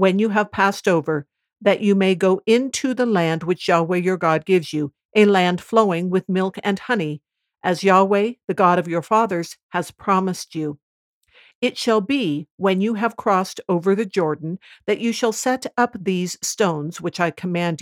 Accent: American